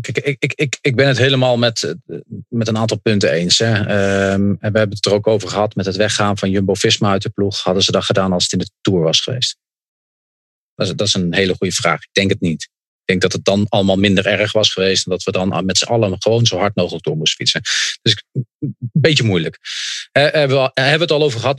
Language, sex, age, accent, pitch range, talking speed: English, male, 40-59, Dutch, 105-140 Hz, 240 wpm